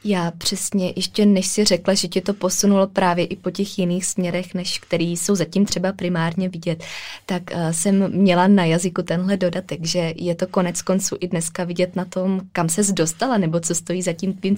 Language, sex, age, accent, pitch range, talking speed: Czech, female, 20-39, native, 170-190 Hz, 200 wpm